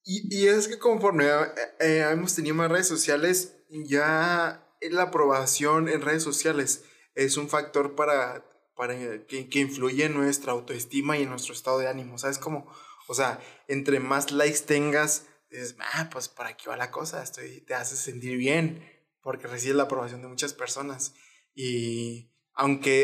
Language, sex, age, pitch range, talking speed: Spanish, male, 20-39, 130-155 Hz, 170 wpm